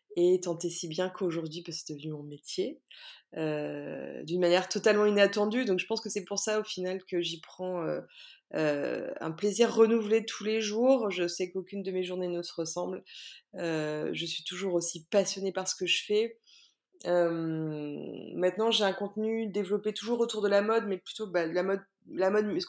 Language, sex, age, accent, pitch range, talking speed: French, female, 20-39, French, 180-240 Hz, 200 wpm